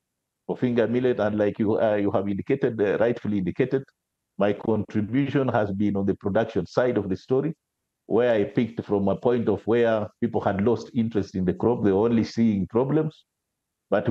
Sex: male